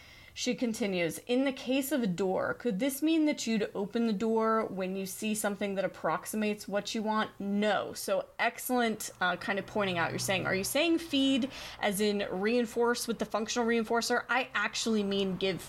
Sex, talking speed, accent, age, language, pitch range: female, 190 wpm, American, 20-39, English, 190-240 Hz